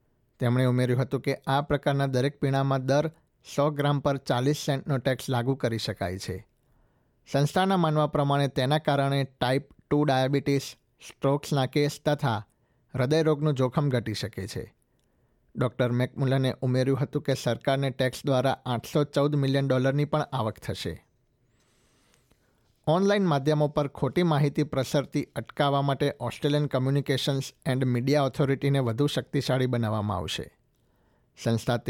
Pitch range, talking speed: 125-145 Hz, 125 wpm